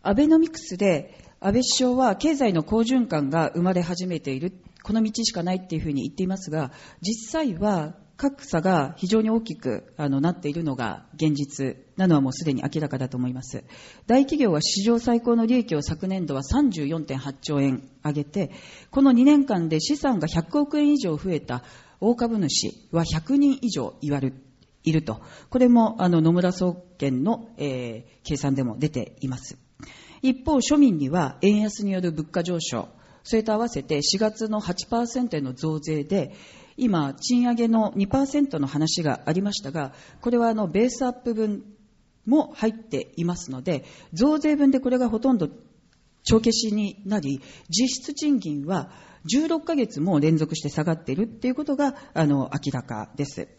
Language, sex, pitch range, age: Japanese, female, 150-235 Hz, 40-59